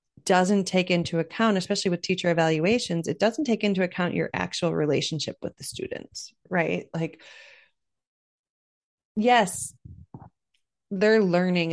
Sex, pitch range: female, 160-210 Hz